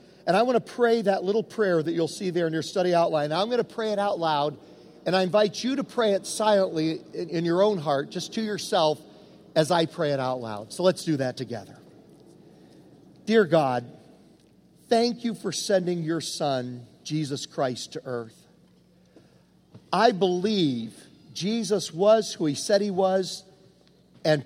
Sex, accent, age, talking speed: male, American, 50-69, 175 wpm